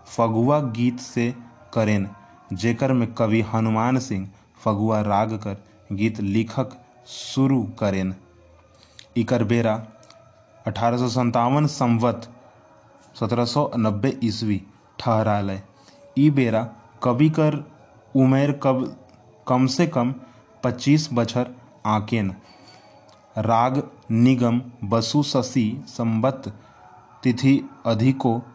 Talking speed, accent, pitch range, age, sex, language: 90 wpm, native, 110-125 Hz, 20-39, male, Hindi